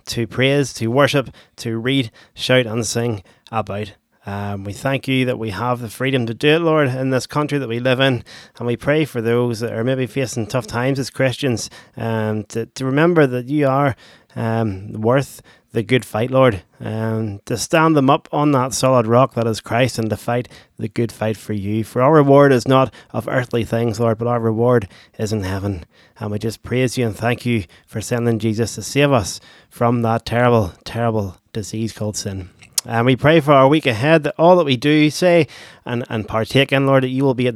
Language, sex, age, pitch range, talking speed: English, male, 20-39, 110-130 Hz, 215 wpm